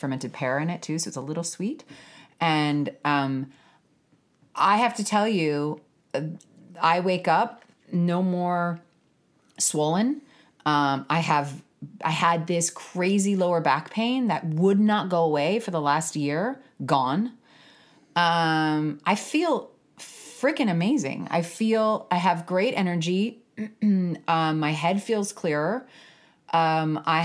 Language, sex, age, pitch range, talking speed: English, female, 30-49, 145-195 Hz, 135 wpm